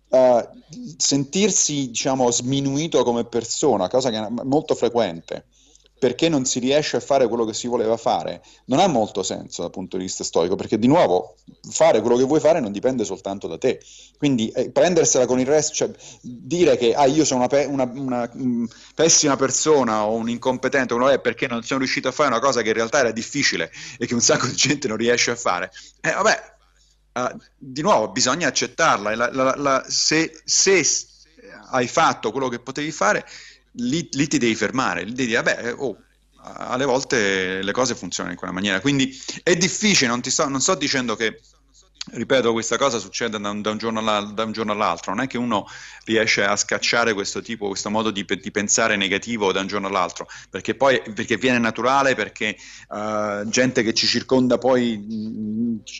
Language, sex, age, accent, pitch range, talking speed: Italian, male, 30-49, native, 110-135 Hz, 180 wpm